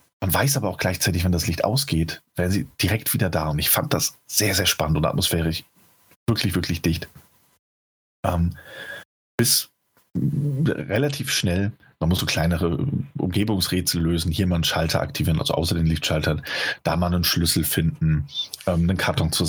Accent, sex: German, male